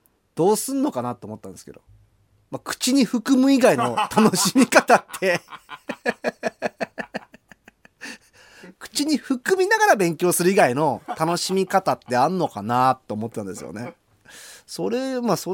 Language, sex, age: Japanese, male, 30-49